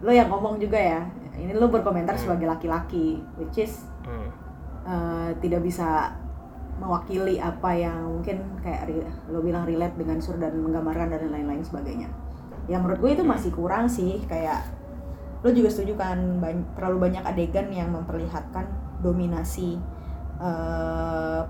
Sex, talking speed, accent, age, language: female, 140 wpm, native, 20-39, Indonesian